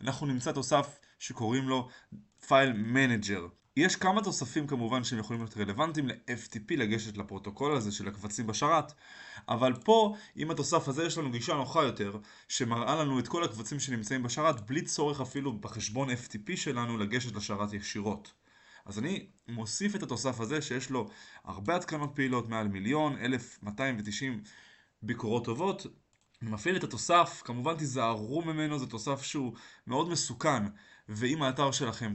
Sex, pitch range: male, 110-145 Hz